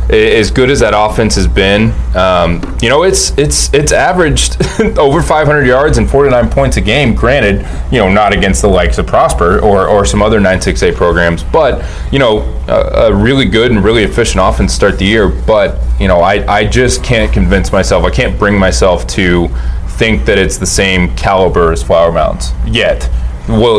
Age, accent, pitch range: 20-39, American, 85-105 Hz